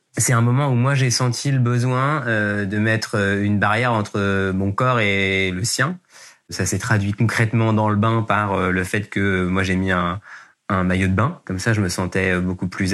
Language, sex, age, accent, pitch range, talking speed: French, male, 20-39, French, 95-120 Hz, 210 wpm